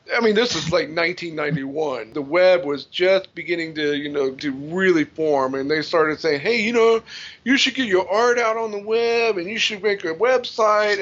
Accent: American